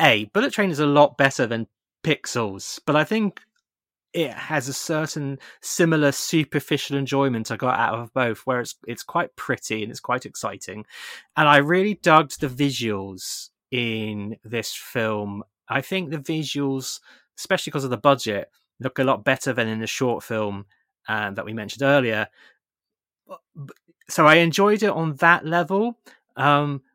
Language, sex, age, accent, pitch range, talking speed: English, male, 20-39, British, 115-155 Hz, 165 wpm